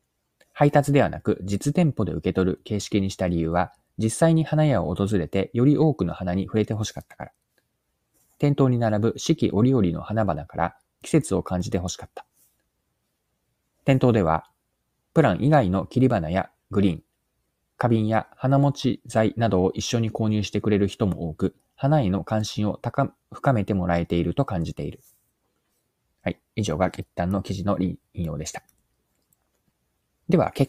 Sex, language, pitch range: male, Japanese, 95-135 Hz